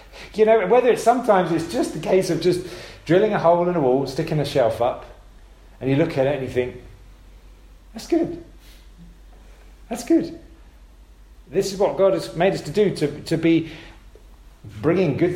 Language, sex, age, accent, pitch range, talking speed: English, male, 40-59, British, 110-175 Hz, 185 wpm